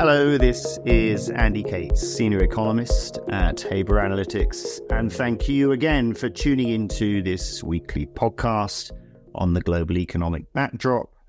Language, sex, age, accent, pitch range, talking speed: English, male, 40-59, British, 95-130 Hz, 135 wpm